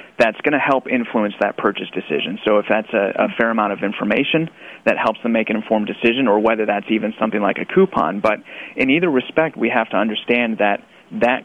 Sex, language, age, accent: male, English, 30-49, American